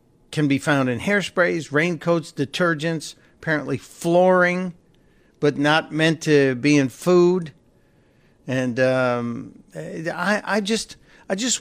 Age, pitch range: 50-69, 140-165 Hz